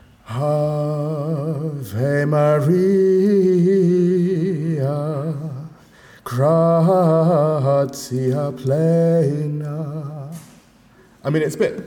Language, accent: English, British